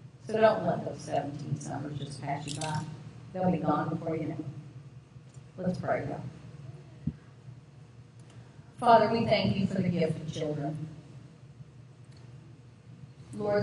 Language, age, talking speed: English, 40-59, 130 wpm